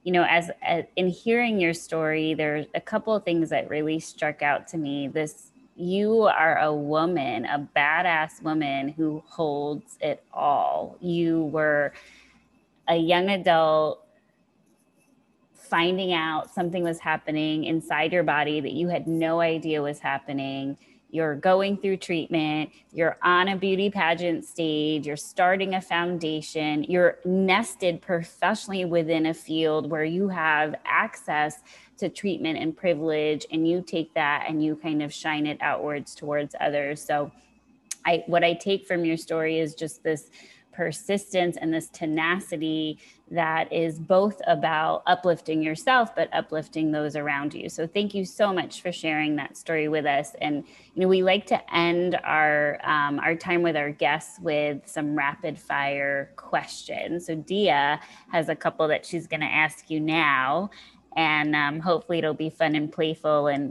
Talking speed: 160 wpm